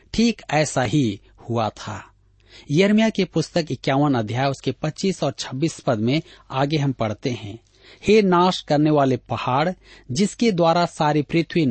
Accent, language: native, Hindi